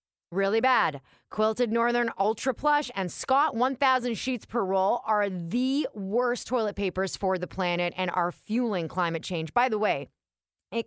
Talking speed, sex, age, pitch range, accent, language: 160 wpm, female, 20-39, 175-245 Hz, American, English